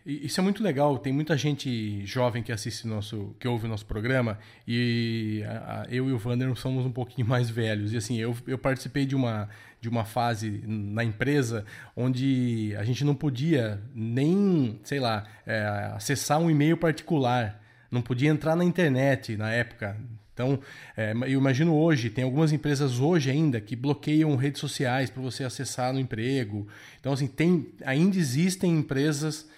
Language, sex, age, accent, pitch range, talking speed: Portuguese, male, 20-39, Brazilian, 115-145 Hz, 170 wpm